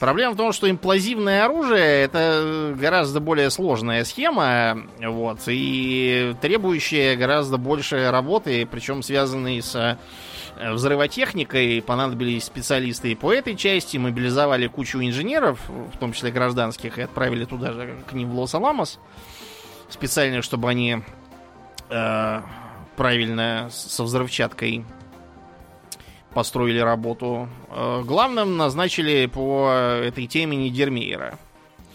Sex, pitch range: male, 115-150 Hz